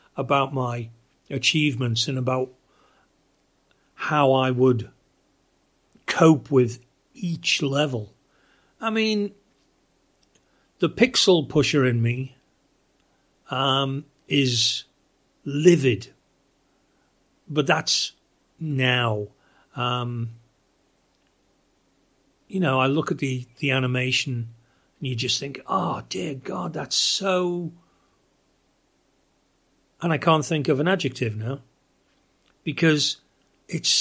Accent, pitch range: British, 125-160 Hz